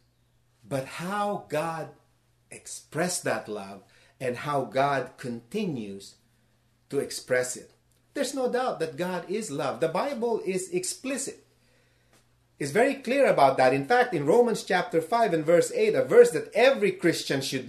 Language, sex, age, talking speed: English, male, 30-49, 150 wpm